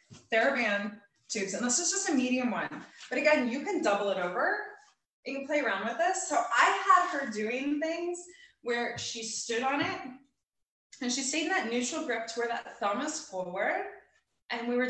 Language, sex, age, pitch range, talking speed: English, female, 20-39, 225-325 Hz, 195 wpm